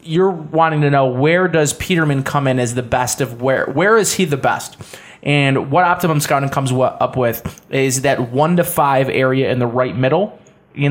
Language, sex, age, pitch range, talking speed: English, male, 20-39, 125-155 Hz, 205 wpm